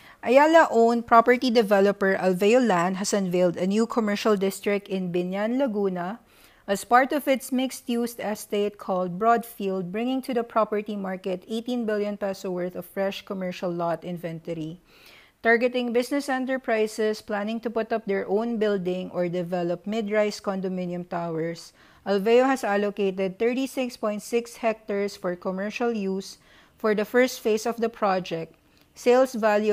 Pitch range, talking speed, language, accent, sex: 190-235 Hz, 145 wpm, English, Filipino, female